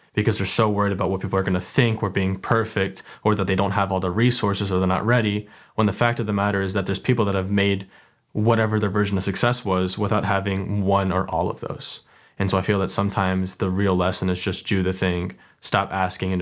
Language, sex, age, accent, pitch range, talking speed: English, male, 20-39, American, 95-110 Hz, 250 wpm